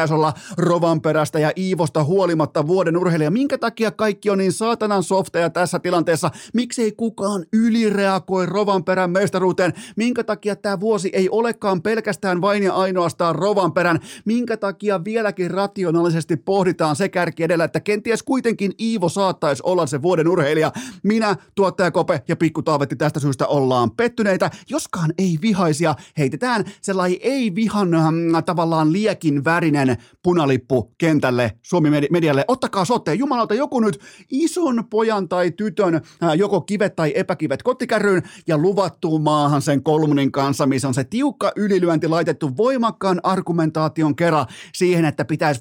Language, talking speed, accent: Finnish, 140 wpm, native